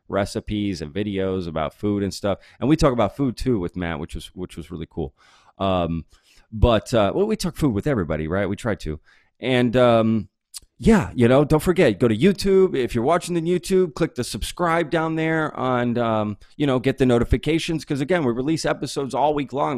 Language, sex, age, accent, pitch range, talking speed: English, male, 30-49, American, 100-130 Hz, 210 wpm